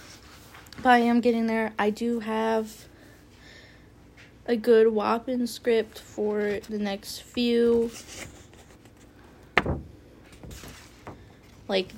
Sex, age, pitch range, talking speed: female, 20-39, 210-240 Hz, 80 wpm